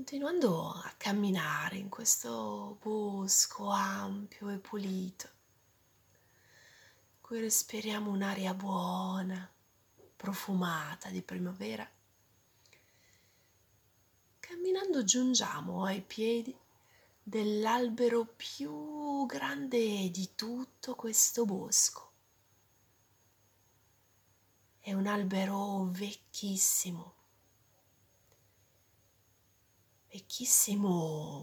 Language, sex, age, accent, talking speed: Italian, female, 30-49, native, 60 wpm